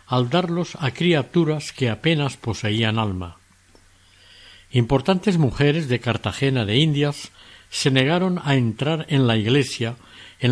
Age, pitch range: 60-79, 100-145 Hz